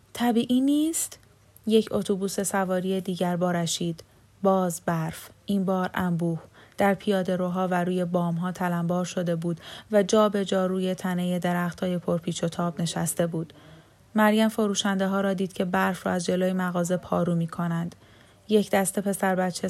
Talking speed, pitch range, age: 165 wpm, 180-205 Hz, 10-29